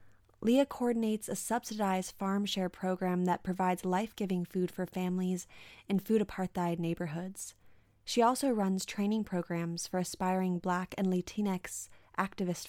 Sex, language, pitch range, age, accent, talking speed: female, English, 175-200 Hz, 20-39, American, 130 wpm